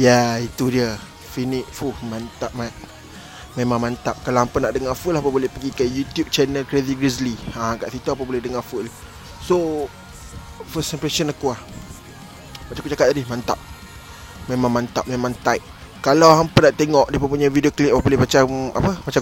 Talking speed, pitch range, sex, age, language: 185 wpm, 120-155 Hz, male, 20-39, Malay